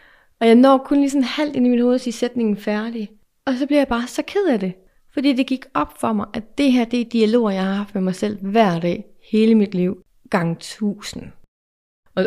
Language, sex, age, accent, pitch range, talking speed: Danish, female, 30-49, native, 185-225 Hz, 235 wpm